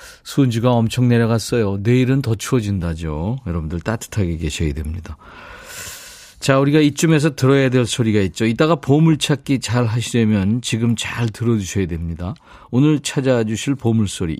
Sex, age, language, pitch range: male, 50-69, Korean, 95-140 Hz